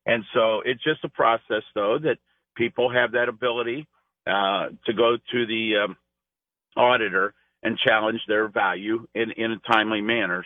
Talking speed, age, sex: 160 wpm, 50-69, male